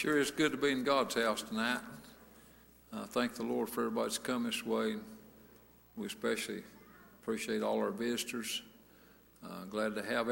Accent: American